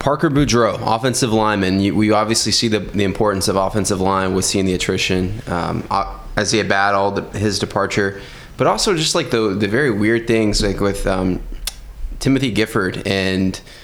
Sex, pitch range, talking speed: male, 100-115 Hz, 175 wpm